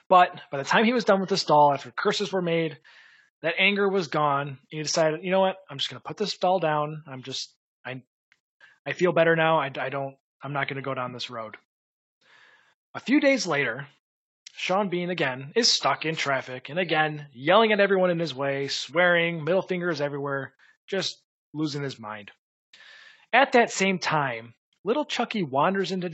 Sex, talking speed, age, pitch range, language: male, 195 wpm, 20-39, 140-190 Hz, English